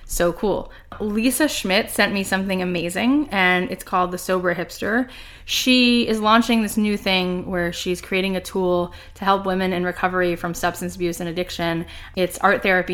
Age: 10-29